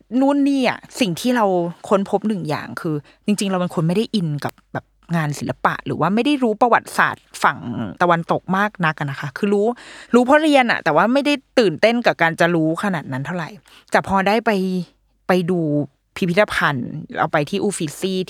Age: 20-39